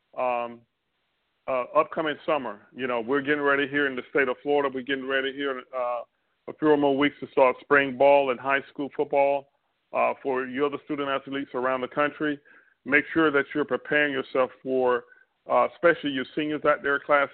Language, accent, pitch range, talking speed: English, American, 130-150 Hz, 190 wpm